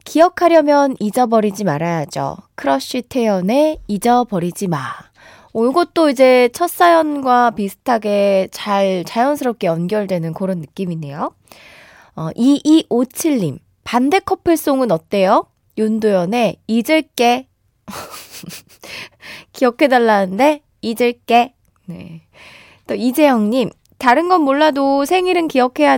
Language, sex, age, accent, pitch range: Korean, female, 20-39, native, 185-290 Hz